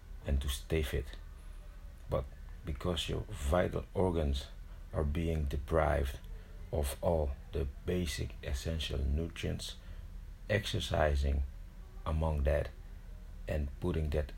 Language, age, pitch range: Dutch, 60-79, 70-85 Hz